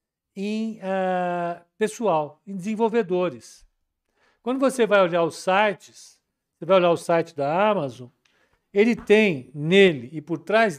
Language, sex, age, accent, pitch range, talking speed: Portuguese, male, 60-79, Brazilian, 155-215 Hz, 130 wpm